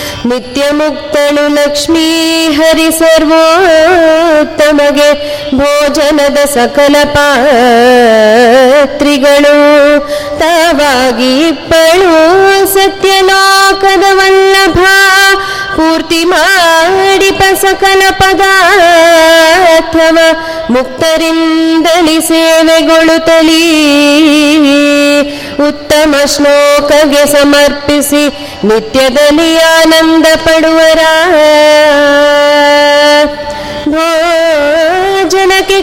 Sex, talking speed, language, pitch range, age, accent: female, 35 wpm, Kannada, 295-380 Hz, 20-39, native